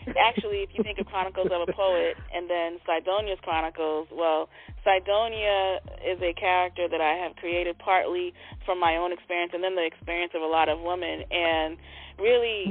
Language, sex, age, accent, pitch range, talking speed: English, female, 20-39, American, 160-190 Hz, 180 wpm